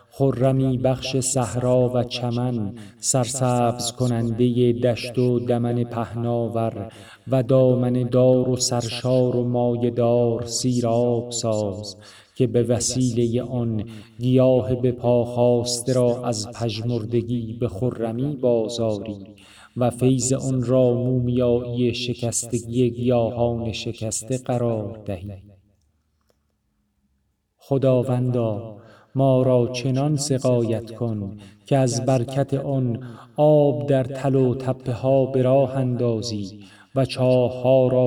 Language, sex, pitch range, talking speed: Persian, male, 115-125 Hz, 100 wpm